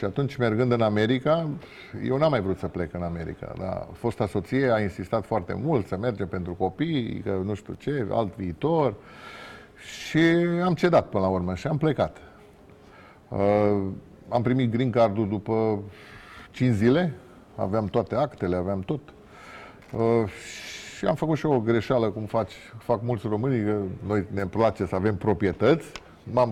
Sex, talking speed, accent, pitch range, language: male, 160 wpm, native, 100-125 Hz, Romanian